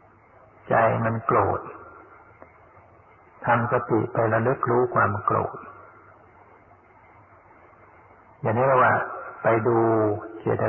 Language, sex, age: Thai, male, 60-79